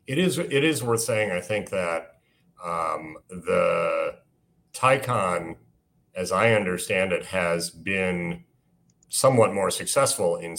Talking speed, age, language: 125 wpm, 40-59, English